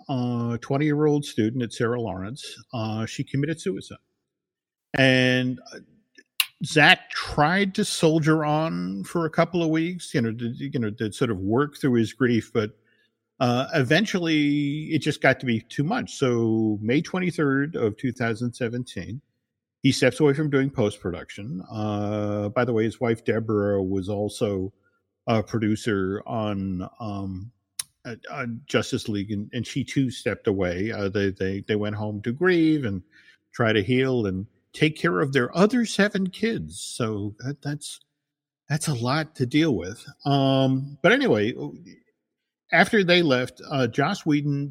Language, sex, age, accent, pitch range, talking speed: English, male, 50-69, American, 110-150 Hz, 150 wpm